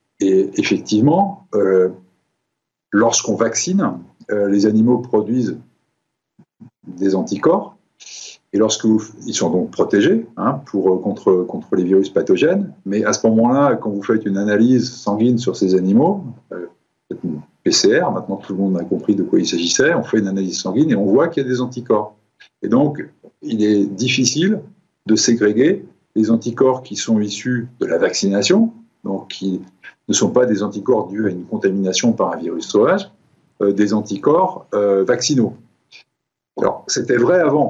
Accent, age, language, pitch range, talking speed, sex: French, 50-69, French, 100-125 Hz, 160 wpm, male